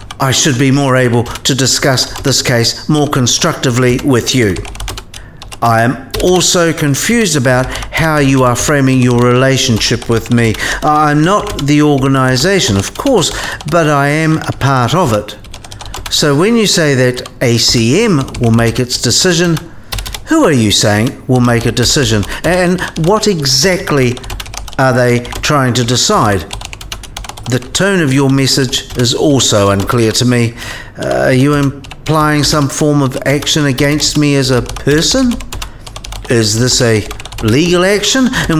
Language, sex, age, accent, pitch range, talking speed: English, male, 60-79, British, 115-150 Hz, 145 wpm